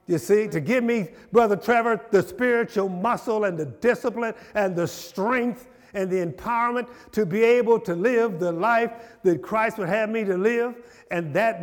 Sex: male